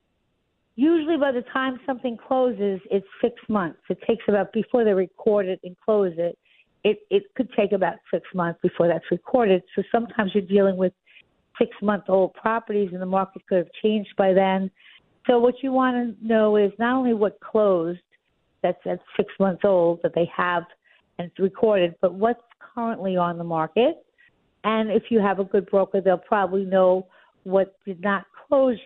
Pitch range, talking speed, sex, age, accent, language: 185-230 Hz, 175 wpm, female, 50-69, American, English